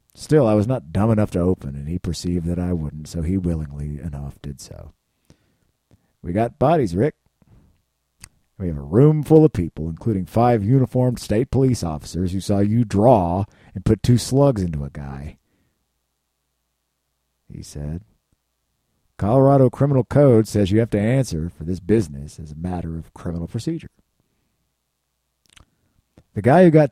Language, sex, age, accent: English, male, 50-69, American